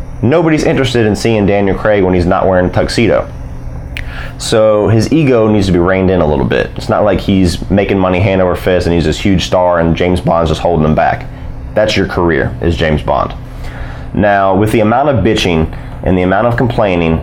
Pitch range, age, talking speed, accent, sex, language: 80-110 Hz, 30-49, 215 wpm, American, male, English